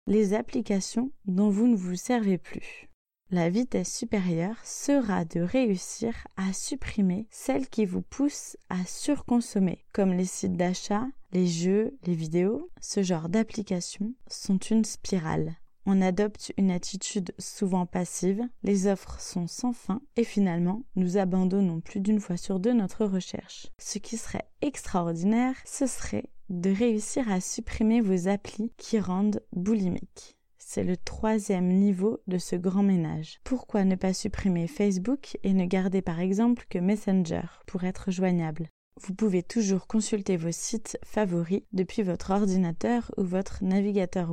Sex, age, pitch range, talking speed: female, 20-39, 180-220 Hz, 150 wpm